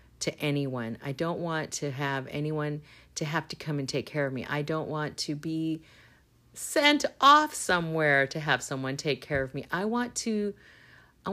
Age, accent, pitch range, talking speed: 40-59, American, 150-185 Hz, 190 wpm